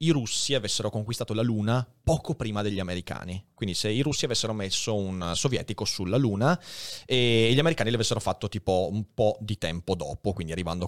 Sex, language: male, Italian